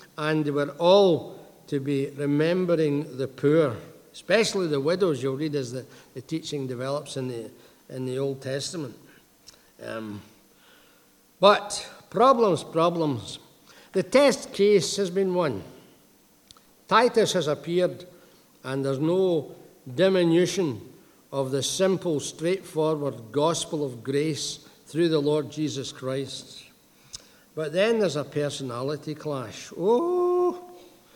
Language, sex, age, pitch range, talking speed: English, male, 60-79, 140-185 Hz, 115 wpm